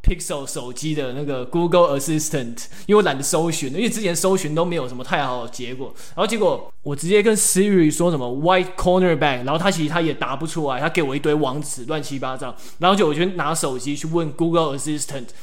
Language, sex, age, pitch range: Chinese, male, 20-39, 145-180 Hz